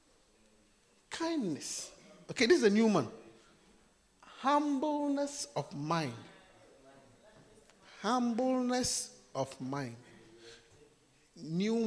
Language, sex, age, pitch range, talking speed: English, male, 50-69, 150-230 Hz, 70 wpm